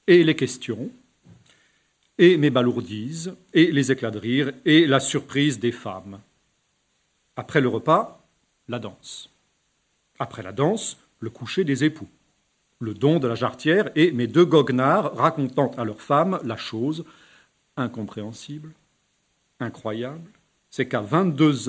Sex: male